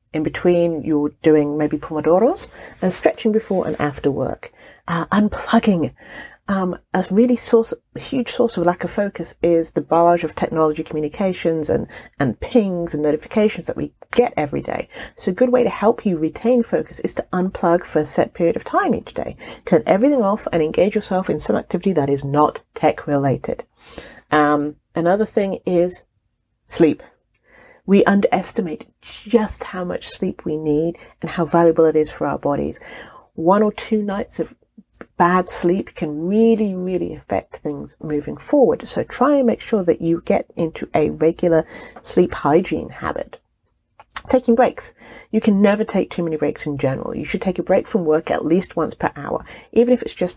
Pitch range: 160-215 Hz